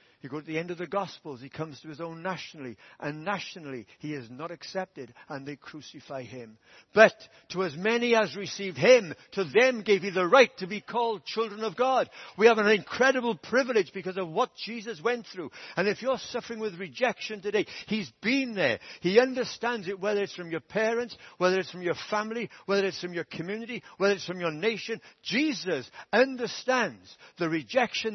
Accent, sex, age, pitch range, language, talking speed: British, male, 60-79, 155-225 Hz, English, 195 wpm